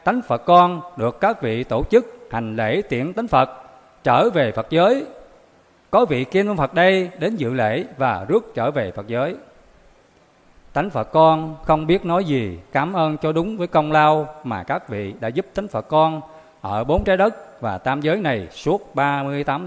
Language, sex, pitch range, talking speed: Vietnamese, male, 130-195 Hz, 190 wpm